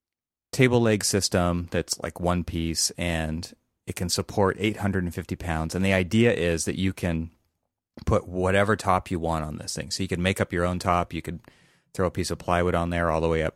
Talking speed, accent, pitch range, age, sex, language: 215 wpm, American, 80-100 Hz, 30-49, male, English